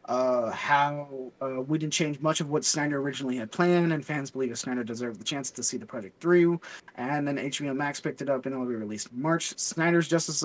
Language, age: English, 30-49